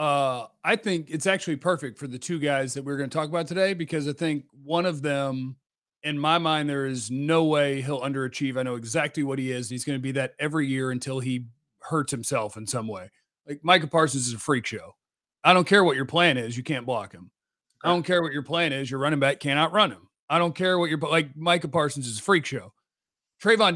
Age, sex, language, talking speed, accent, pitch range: 40-59, male, English, 240 wpm, American, 140-180 Hz